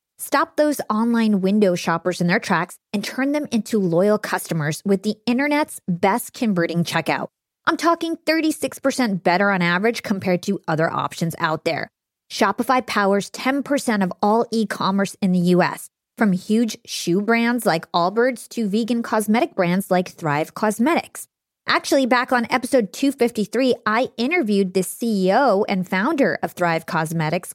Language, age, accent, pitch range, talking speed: English, 20-39, American, 185-255 Hz, 150 wpm